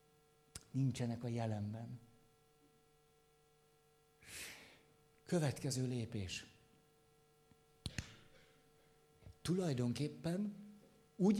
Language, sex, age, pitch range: Hungarian, male, 50-69, 120-150 Hz